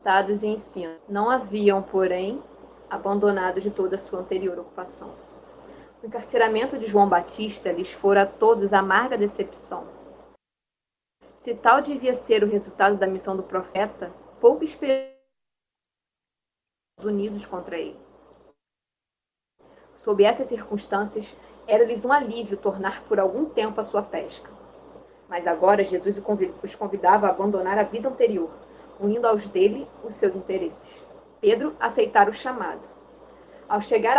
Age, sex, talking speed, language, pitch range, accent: 20-39, female, 130 wpm, Portuguese, 195-250 Hz, Brazilian